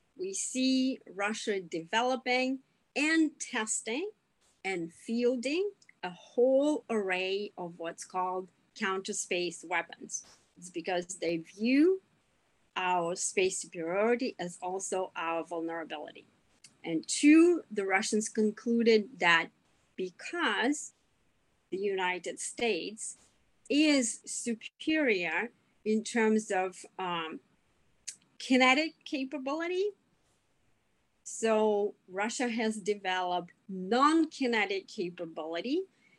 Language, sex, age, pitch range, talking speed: English, female, 40-59, 185-260 Hz, 85 wpm